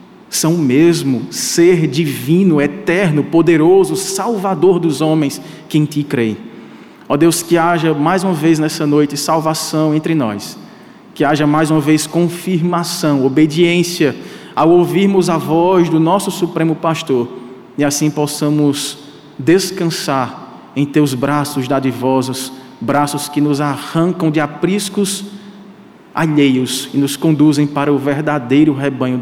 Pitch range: 145-180 Hz